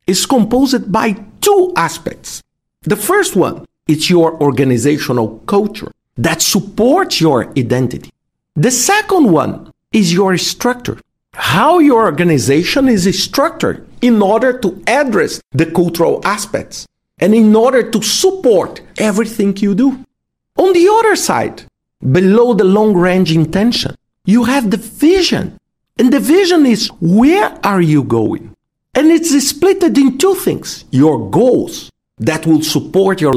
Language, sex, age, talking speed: English, male, 50-69, 135 wpm